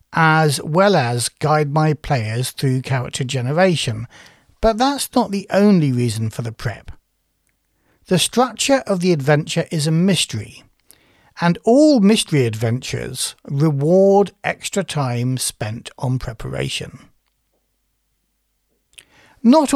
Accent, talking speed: British, 110 wpm